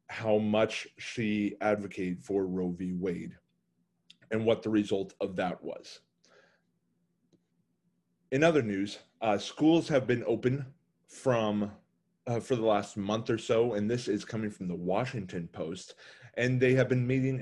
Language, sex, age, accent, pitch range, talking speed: English, male, 30-49, American, 100-130 Hz, 150 wpm